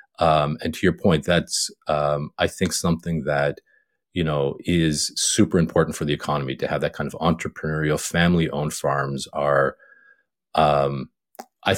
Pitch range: 75-95 Hz